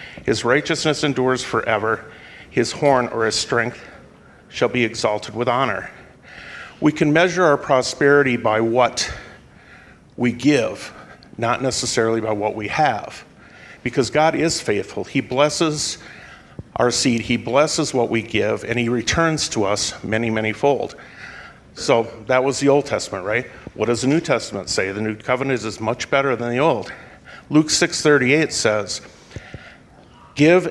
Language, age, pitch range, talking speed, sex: English, 50-69, 115-140 Hz, 150 wpm, male